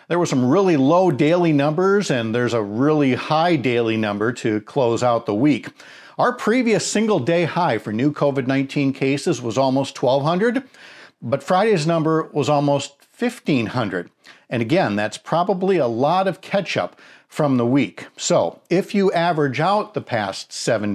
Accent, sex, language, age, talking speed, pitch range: American, male, English, 50-69, 160 wpm, 130-180 Hz